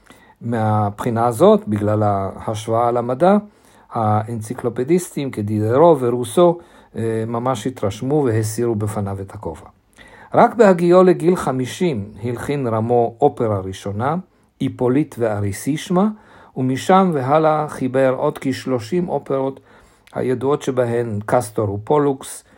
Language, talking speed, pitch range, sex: Hebrew, 90 wpm, 110-150 Hz, male